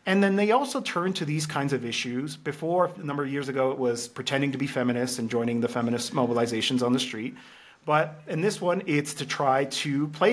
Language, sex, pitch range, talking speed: English, male, 125-180 Hz, 225 wpm